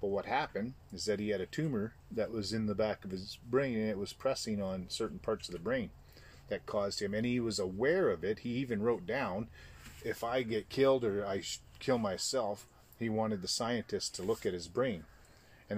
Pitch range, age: 95-115 Hz, 30-49